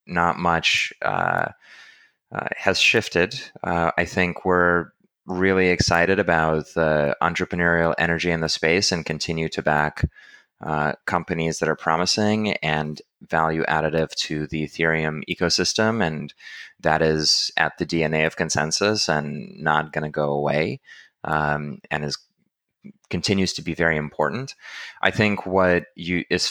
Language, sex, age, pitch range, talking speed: English, male, 20-39, 80-95 Hz, 140 wpm